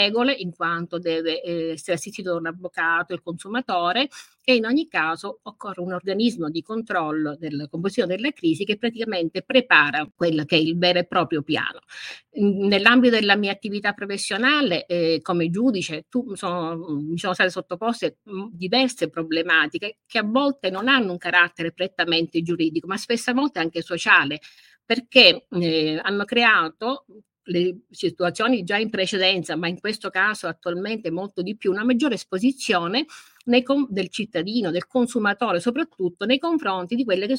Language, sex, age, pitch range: Italian, female, 50-69, 175-245 Hz